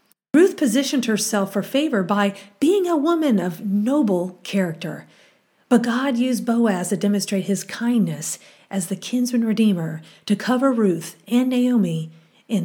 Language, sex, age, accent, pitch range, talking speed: English, female, 40-59, American, 195-245 Hz, 140 wpm